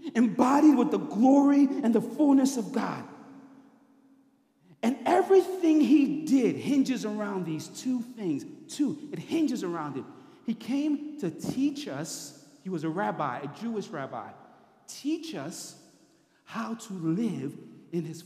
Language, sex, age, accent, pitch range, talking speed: English, male, 40-59, American, 170-265 Hz, 140 wpm